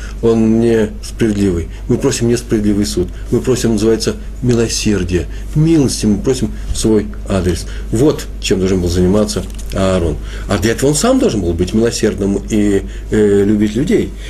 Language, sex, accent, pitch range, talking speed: Russian, male, native, 100-120 Hz, 145 wpm